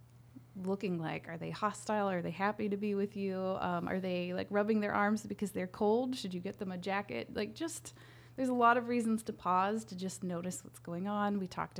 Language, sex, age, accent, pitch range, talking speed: English, female, 20-39, American, 160-195 Hz, 230 wpm